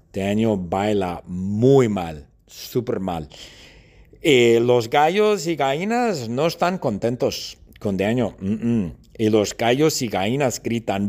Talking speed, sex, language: 125 wpm, male, English